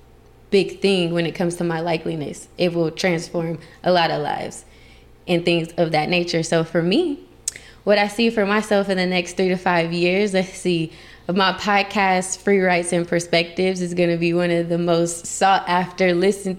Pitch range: 175-225 Hz